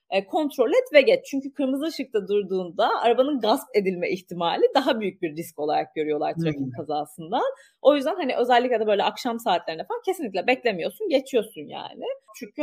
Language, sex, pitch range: Turkish, female, 190-285 Hz